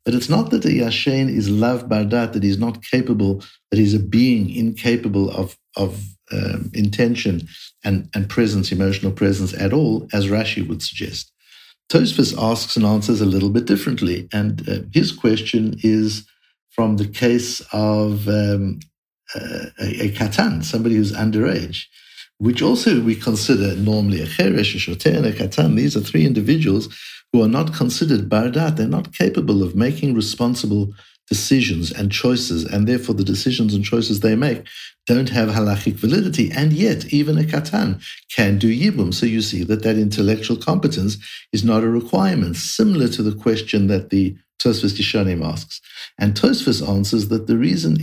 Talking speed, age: 165 wpm, 60-79